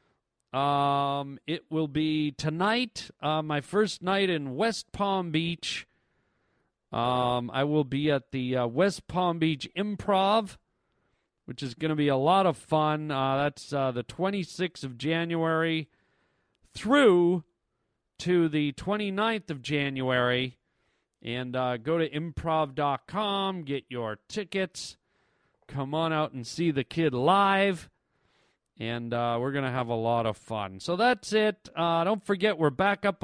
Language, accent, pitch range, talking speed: English, American, 135-180 Hz, 145 wpm